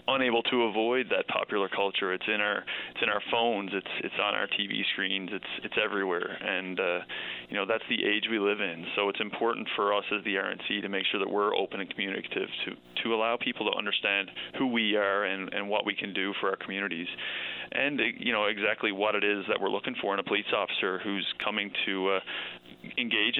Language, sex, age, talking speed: English, male, 20-39, 220 wpm